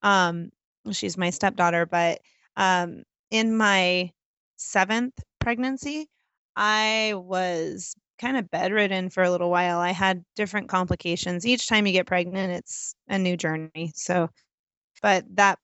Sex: female